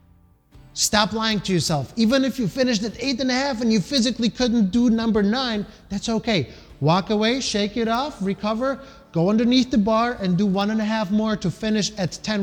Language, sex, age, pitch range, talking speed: English, male, 30-49, 165-225 Hz, 200 wpm